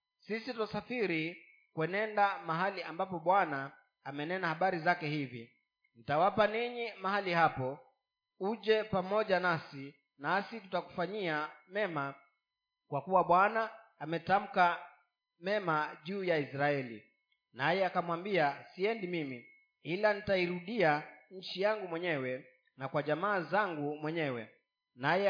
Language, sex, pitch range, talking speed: Swahili, male, 150-200 Hz, 100 wpm